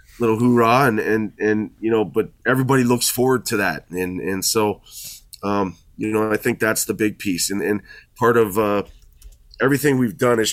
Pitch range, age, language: 100-115 Hz, 20-39, English